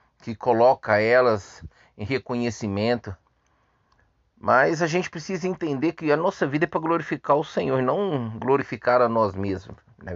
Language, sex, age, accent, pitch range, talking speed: Portuguese, male, 30-49, Brazilian, 115-170 Hz, 150 wpm